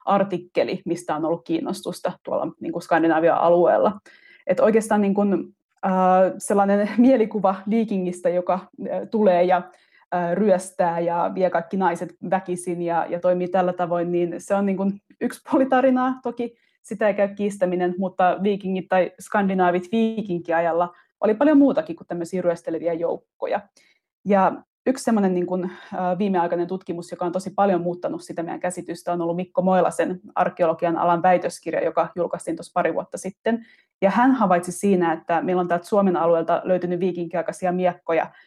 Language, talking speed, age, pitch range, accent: Finnish, 150 wpm, 20-39, 175-205 Hz, native